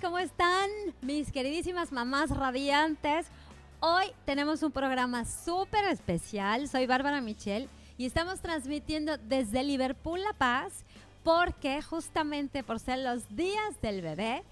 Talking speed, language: 125 wpm, English